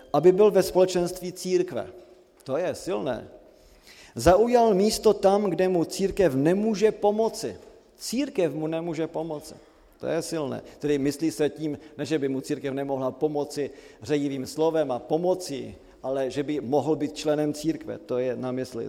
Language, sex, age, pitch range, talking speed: Slovak, male, 40-59, 145-200 Hz, 155 wpm